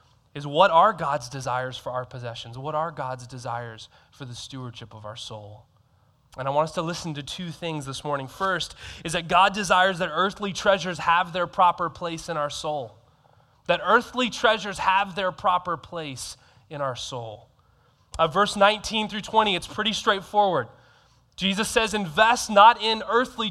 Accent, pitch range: American, 140-200 Hz